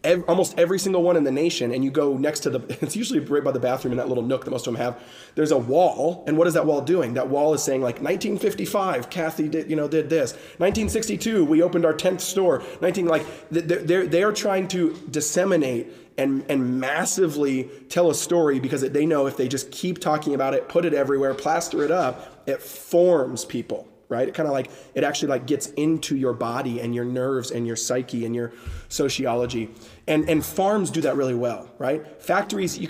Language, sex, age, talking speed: English, male, 30-49, 215 wpm